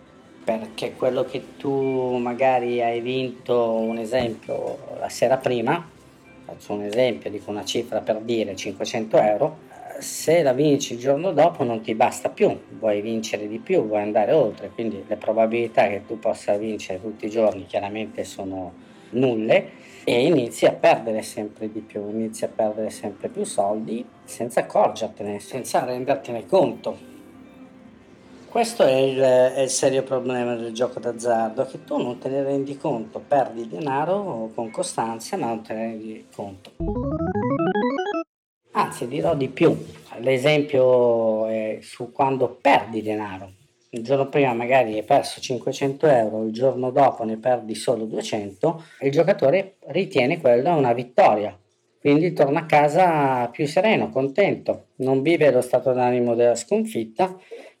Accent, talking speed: native, 150 wpm